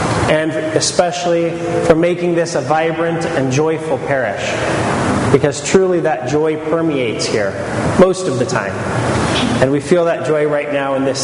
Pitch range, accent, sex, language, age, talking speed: 140-170 Hz, American, male, English, 30-49, 155 wpm